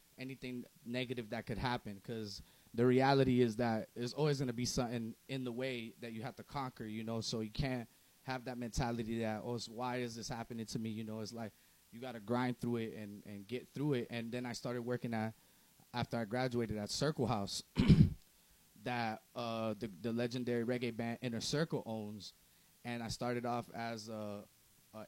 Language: English